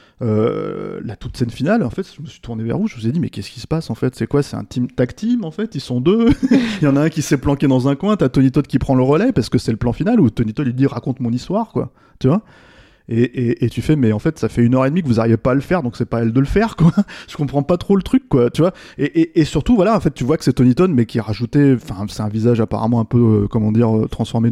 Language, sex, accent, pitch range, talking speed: French, male, French, 115-150 Hz, 340 wpm